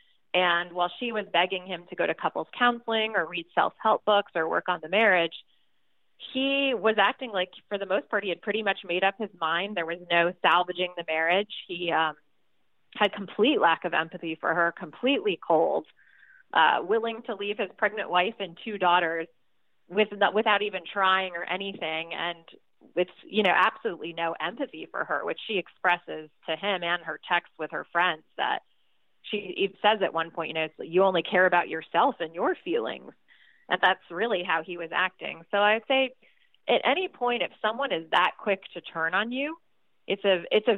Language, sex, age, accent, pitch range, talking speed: English, female, 30-49, American, 170-210 Hz, 195 wpm